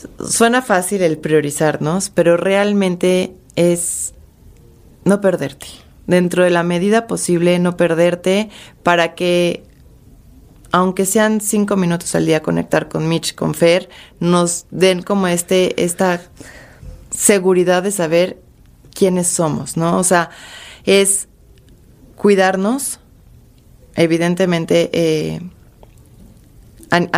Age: 30-49